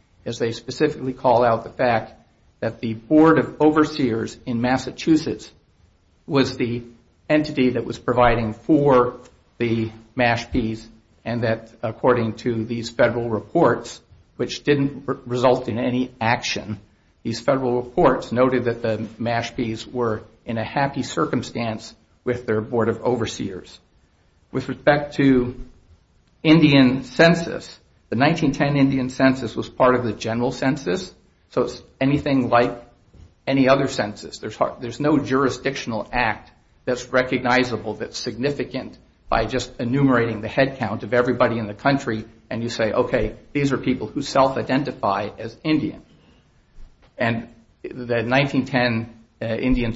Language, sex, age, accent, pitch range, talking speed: English, male, 50-69, American, 115-130 Hz, 135 wpm